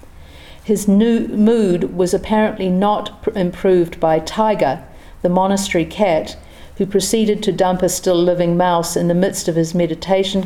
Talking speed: 150 wpm